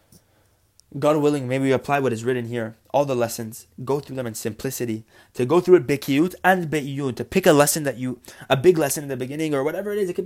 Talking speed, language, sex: 245 wpm, English, male